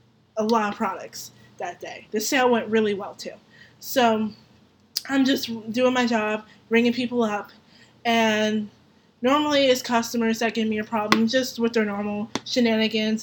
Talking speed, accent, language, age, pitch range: 160 wpm, American, English, 20-39, 210-240 Hz